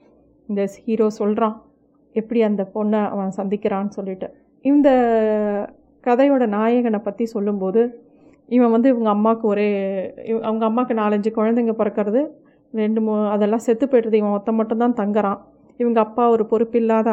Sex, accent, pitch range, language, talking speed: female, native, 210-260 Hz, Tamil, 135 wpm